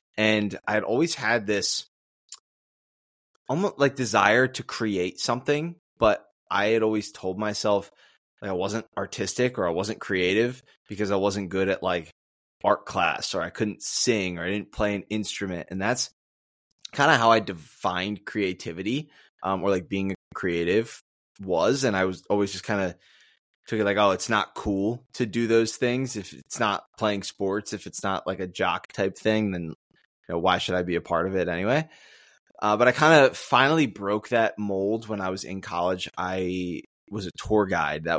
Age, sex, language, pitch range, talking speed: 20-39, male, English, 90-110 Hz, 190 wpm